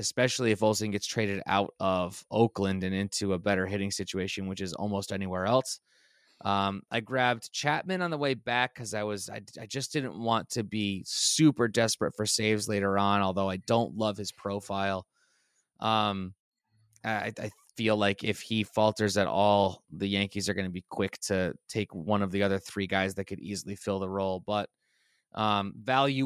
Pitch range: 100-115 Hz